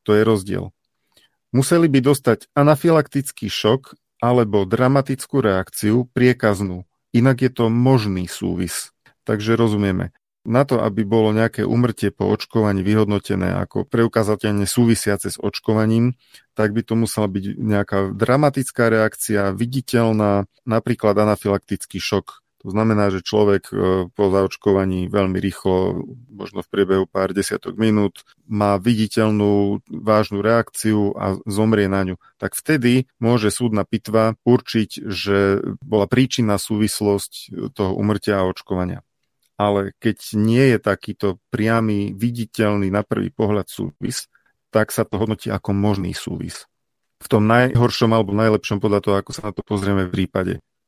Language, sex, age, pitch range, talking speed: Slovak, male, 40-59, 100-115 Hz, 135 wpm